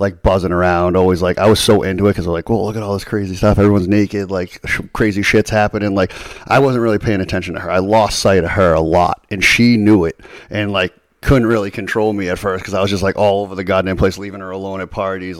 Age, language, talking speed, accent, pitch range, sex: 30-49, English, 270 wpm, American, 95-105 Hz, male